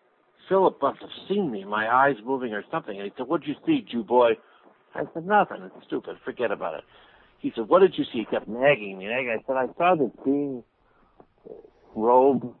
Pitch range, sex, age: 110-140 Hz, male, 60-79